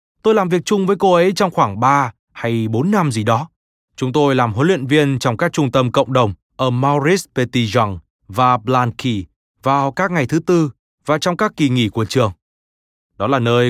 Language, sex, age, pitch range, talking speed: Vietnamese, male, 20-39, 120-155 Hz, 210 wpm